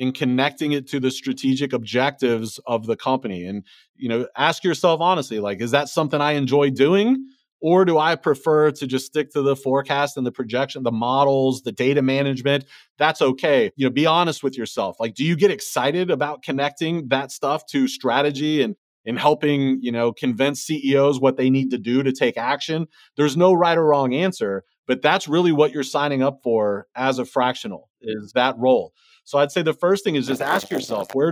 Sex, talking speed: male, 205 wpm